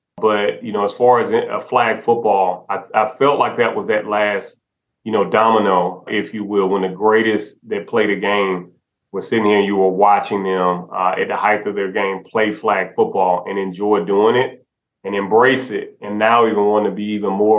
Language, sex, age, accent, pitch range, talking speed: English, male, 30-49, American, 95-110 Hz, 215 wpm